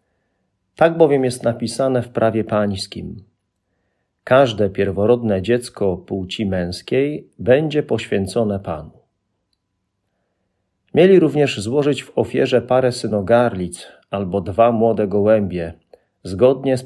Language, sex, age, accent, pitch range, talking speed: Polish, male, 40-59, native, 95-130 Hz, 100 wpm